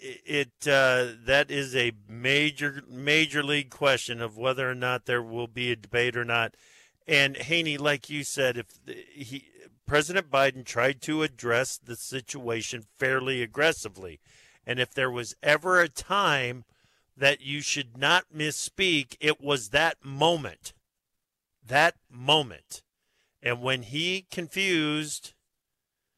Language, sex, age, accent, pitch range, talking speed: English, male, 50-69, American, 125-155 Hz, 135 wpm